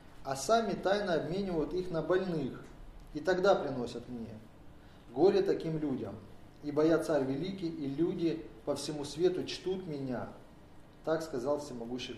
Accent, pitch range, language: native, 145-185 Hz, Russian